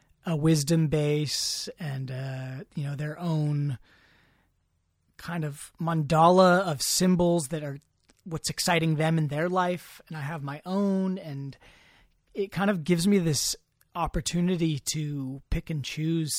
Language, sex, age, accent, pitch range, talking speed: English, male, 30-49, American, 140-165 Hz, 145 wpm